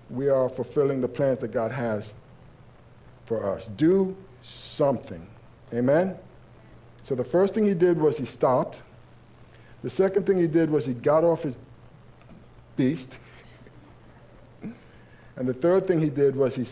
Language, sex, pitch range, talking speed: English, male, 120-155 Hz, 145 wpm